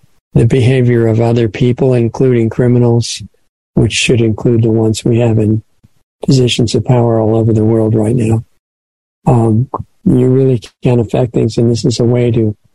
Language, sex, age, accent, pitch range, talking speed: English, male, 50-69, American, 110-125 Hz, 170 wpm